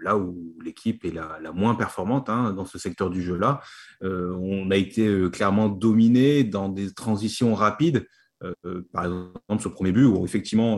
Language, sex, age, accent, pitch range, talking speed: French, male, 30-49, French, 95-120 Hz, 180 wpm